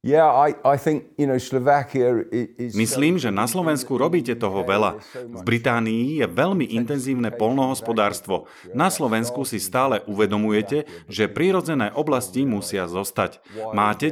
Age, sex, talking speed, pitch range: 40-59, male, 100 wpm, 100-135 Hz